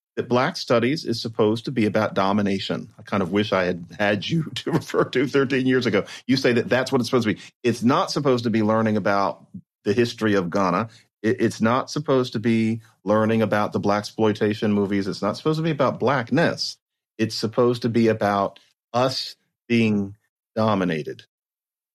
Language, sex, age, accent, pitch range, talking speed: English, male, 40-59, American, 110-175 Hz, 190 wpm